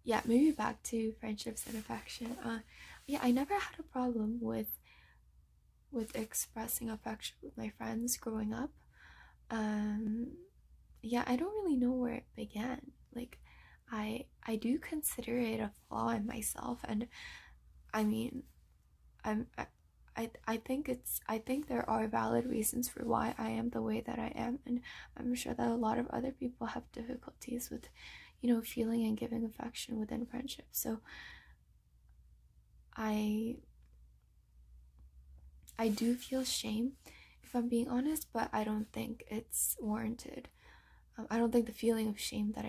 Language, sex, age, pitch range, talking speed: English, female, 10-29, 210-245 Hz, 155 wpm